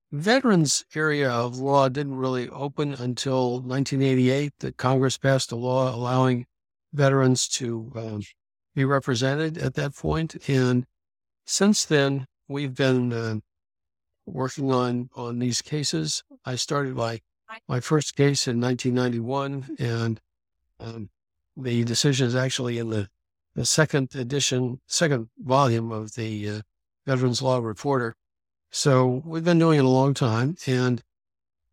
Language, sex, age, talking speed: English, male, 60-79, 130 wpm